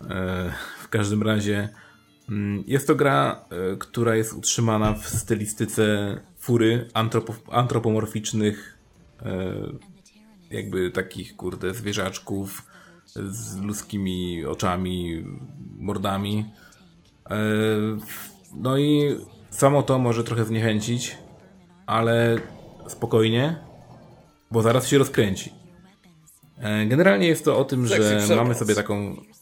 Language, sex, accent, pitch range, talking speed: Polish, male, native, 105-130 Hz, 90 wpm